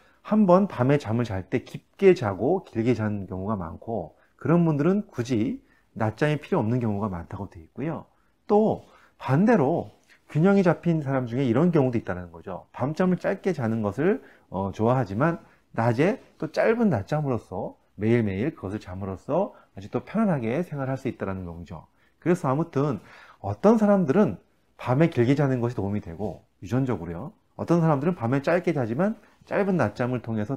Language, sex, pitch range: Korean, male, 105-165 Hz